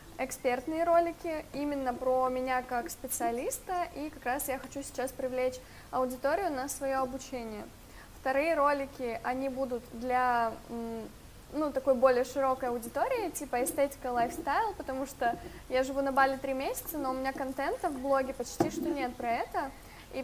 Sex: female